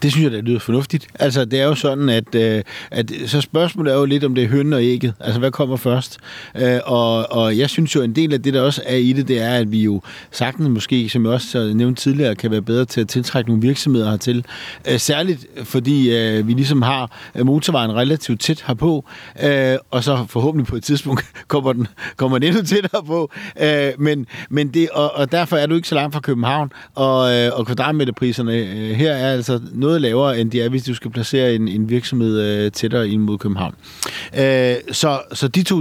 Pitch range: 115-145 Hz